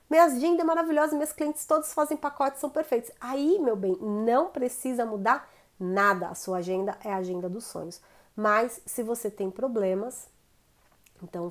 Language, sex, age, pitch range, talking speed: Portuguese, female, 30-49, 190-235 Hz, 160 wpm